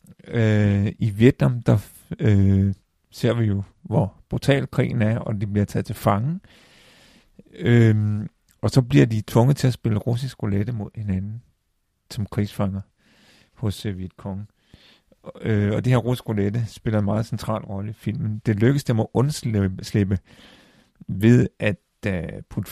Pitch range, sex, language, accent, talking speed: 100-120 Hz, male, Danish, native, 160 wpm